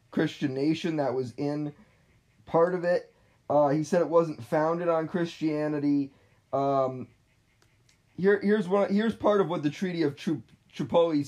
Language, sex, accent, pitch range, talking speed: English, male, American, 140-175 Hz, 150 wpm